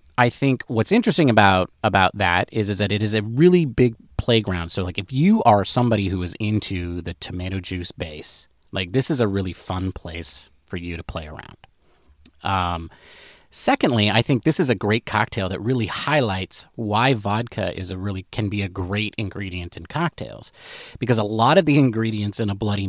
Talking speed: 195 wpm